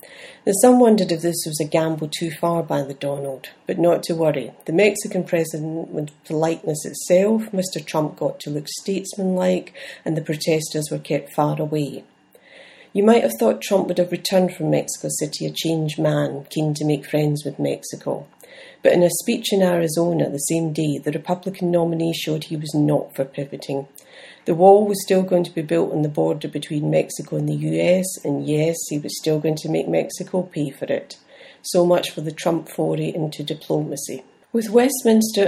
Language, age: English, 40-59